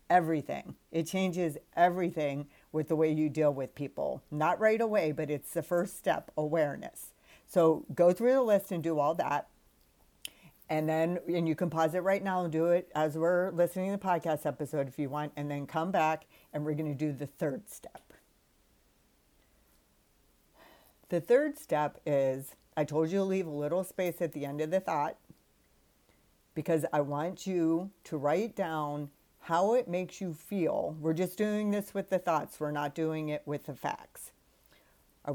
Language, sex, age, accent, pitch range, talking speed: English, female, 50-69, American, 150-180 Hz, 185 wpm